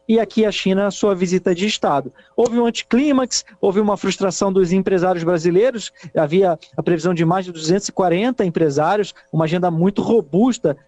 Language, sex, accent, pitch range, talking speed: Portuguese, male, Brazilian, 160-205 Hz, 165 wpm